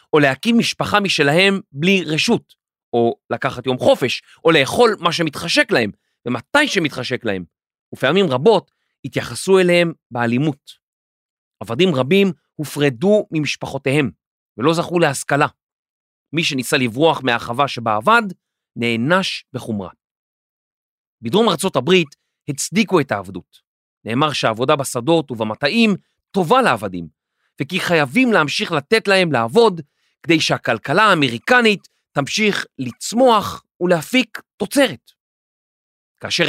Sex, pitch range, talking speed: male, 130-195 Hz, 95 wpm